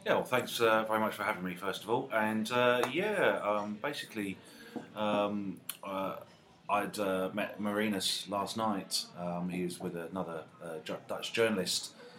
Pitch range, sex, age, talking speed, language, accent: 90-105 Hz, male, 30-49, 160 wpm, English, British